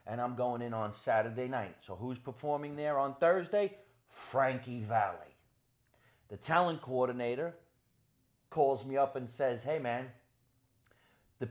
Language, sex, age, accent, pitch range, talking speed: English, male, 40-59, American, 115-150 Hz, 135 wpm